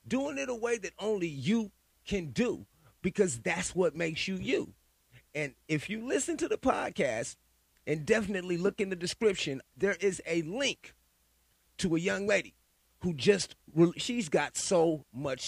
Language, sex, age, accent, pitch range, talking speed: English, male, 30-49, American, 120-200 Hz, 165 wpm